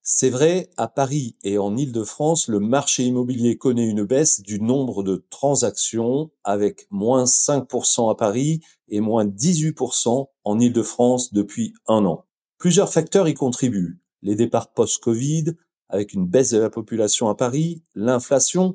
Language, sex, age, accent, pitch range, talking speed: French, male, 40-59, French, 115-150 Hz, 160 wpm